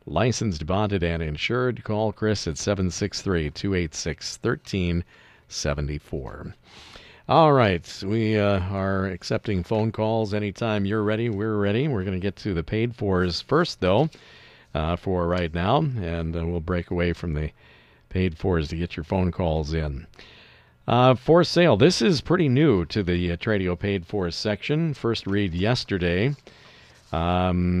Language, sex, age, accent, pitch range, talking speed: English, male, 50-69, American, 85-115 Hz, 140 wpm